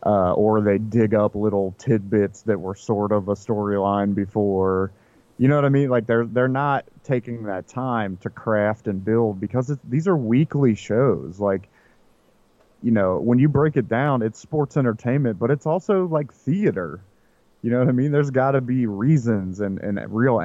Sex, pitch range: male, 100-120 Hz